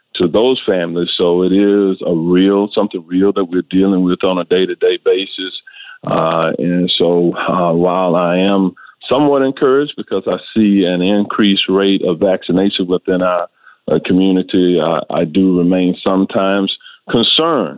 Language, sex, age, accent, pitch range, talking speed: English, male, 40-59, American, 85-100 Hz, 160 wpm